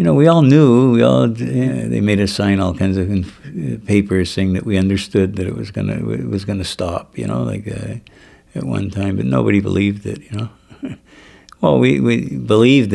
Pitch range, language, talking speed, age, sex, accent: 95-105 Hz, English, 215 wpm, 60-79, male, American